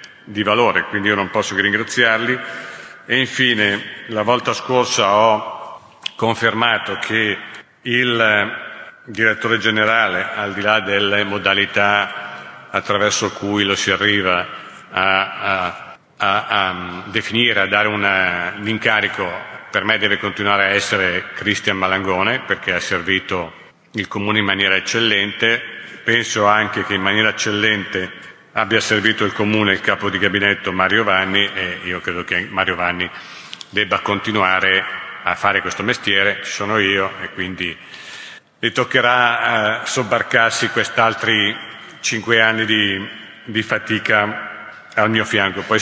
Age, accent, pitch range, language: 50-69, native, 100-115 Hz, Italian